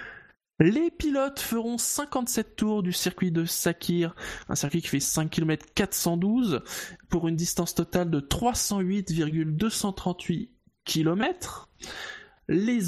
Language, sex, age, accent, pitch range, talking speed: French, male, 20-39, French, 160-205 Hz, 110 wpm